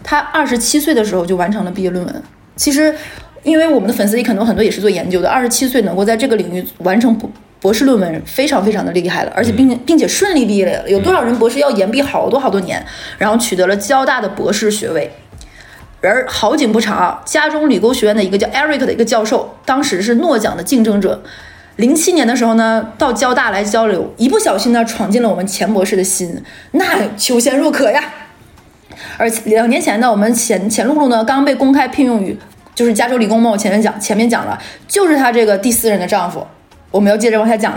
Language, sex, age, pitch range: Chinese, female, 20-39, 200-260 Hz